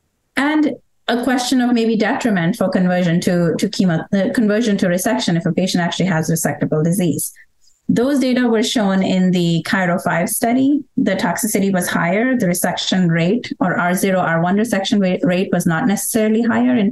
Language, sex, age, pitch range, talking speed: English, female, 30-49, 170-220 Hz, 170 wpm